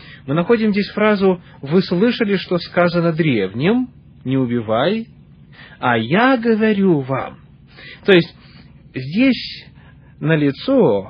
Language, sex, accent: Russian, male, native